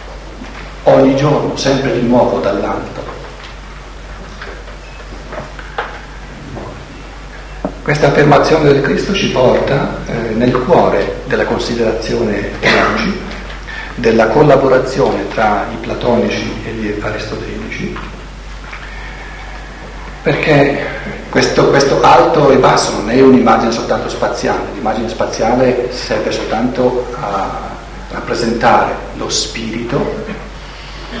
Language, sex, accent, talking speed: Italian, male, native, 85 wpm